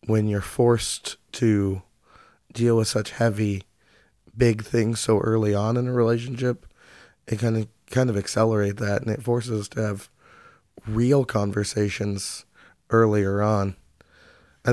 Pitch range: 105-115 Hz